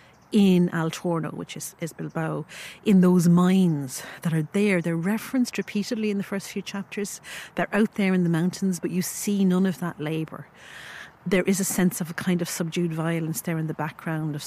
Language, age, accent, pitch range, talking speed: English, 40-59, Irish, 160-195 Hz, 205 wpm